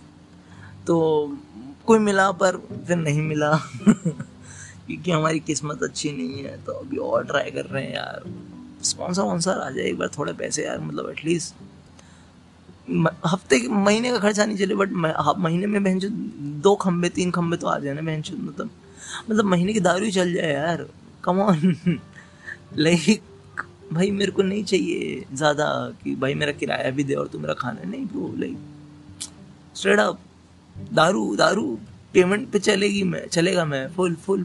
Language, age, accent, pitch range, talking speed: Hindi, 20-39, native, 145-190 Hz, 150 wpm